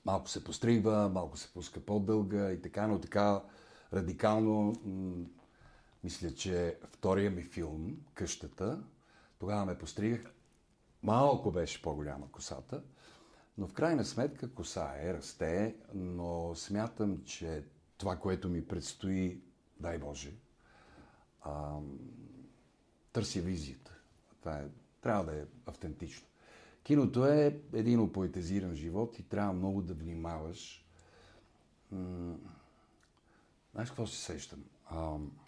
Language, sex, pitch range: Bulgarian, male, 80-105 Hz